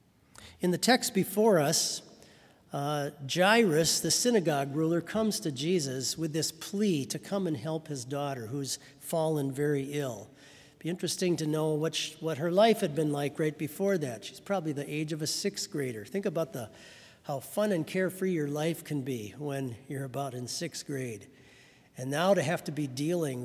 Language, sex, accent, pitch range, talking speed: English, male, American, 135-170 Hz, 185 wpm